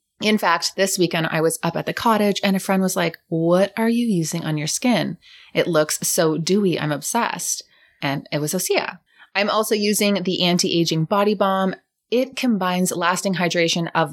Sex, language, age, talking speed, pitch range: female, English, 20-39, 185 wpm, 165-200 Hz